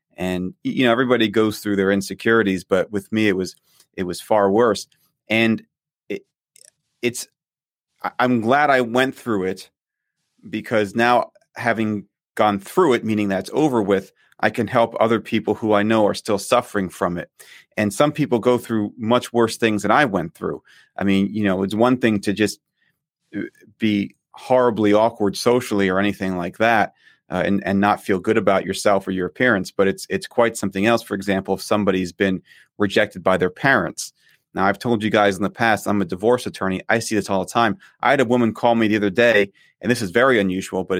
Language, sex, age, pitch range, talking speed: English, male, 30-49, 100-120 Hz, 200 wpm